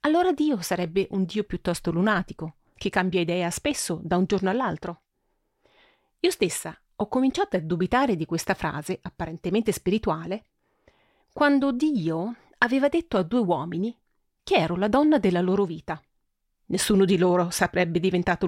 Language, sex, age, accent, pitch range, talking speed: Italian, female, 40-59, native, 175-265 Hz, 145 wpm